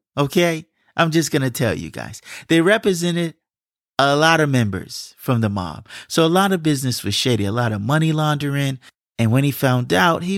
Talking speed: 200 wpm